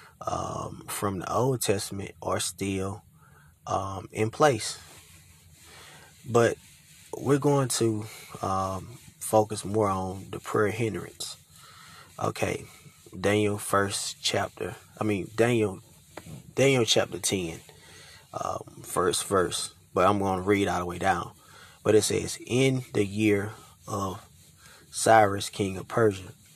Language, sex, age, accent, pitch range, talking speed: English, male, 20-39, American, 95-110 Hz, 120 wpm